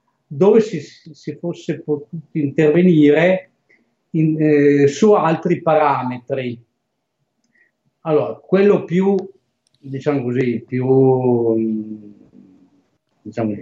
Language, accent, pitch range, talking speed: Italian, native, 135-185 Hz, 80 wpm